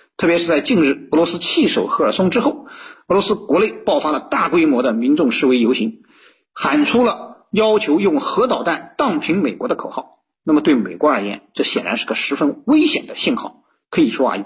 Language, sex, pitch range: Chinese, male, 210-305 Hz